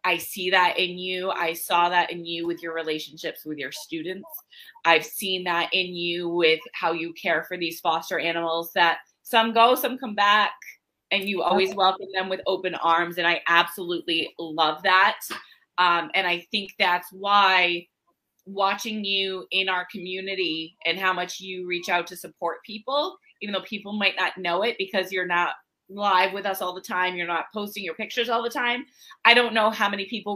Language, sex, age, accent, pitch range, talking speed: English, female, 20-39, American, 170-220 Hz, 195 wpm